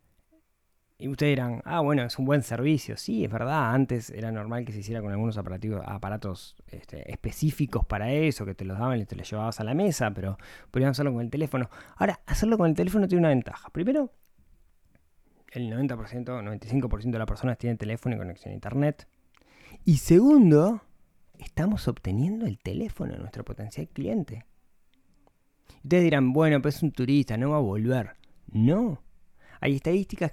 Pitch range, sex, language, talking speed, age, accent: 105-150 Hz, male, Spanish, 175 wpm, 20-39, Argentinian